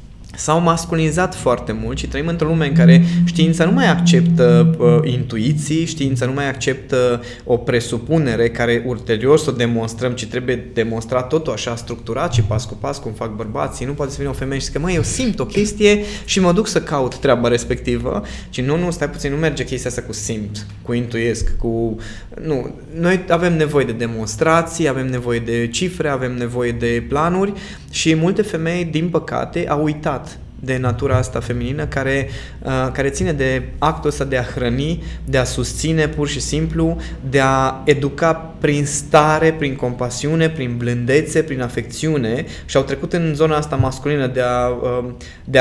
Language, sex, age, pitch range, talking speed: Romanian, male, 20-39, 120-155 Hz, 180 wpm